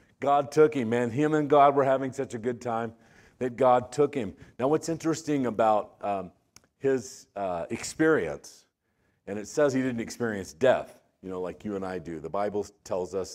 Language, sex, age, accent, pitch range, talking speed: English, male, 50-69, American, 95-120 Hz, 195 wpm